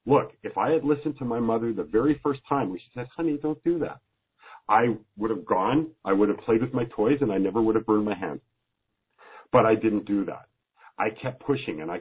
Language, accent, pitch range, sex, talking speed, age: English, American, 105-130 Hz, male, 240 wpm, 50-69